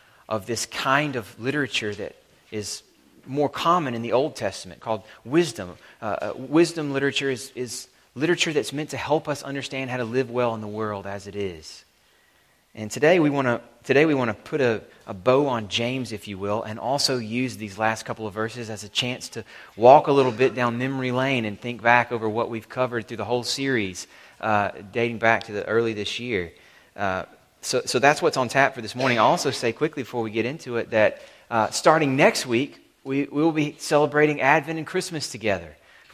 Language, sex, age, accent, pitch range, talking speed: English, male, 30-49, American, 115-145 Hz, 205 wpm